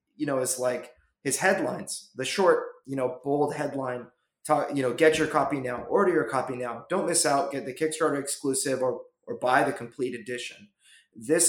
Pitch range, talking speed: 125-155 Hz, 195 wpm